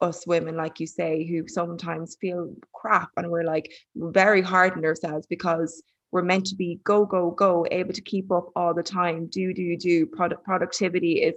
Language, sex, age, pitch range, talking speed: English, female, 20-39, 165-185 Hz, 195 wpm